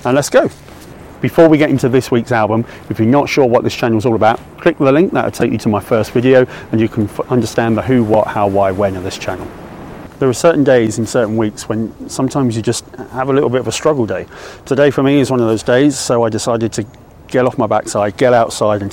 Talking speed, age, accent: 255 wpm, 30-49, British